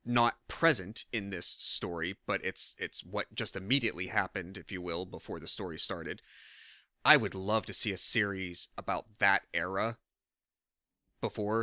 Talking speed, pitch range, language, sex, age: 155 wpm, 95-115 Hz, English, male, 30-49